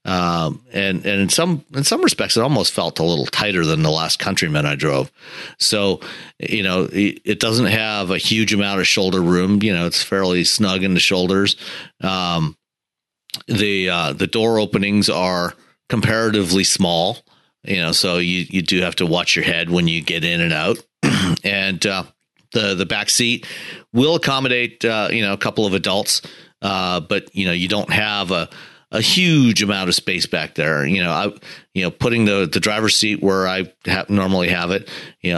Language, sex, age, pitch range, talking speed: English, male, 40-59, 90-110 Hz, 190 wpm